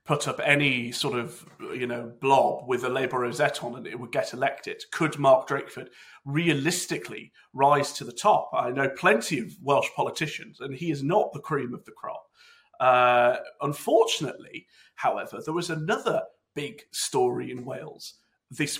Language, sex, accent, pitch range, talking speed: English, male, British, 140-200 Hz, 165 wpm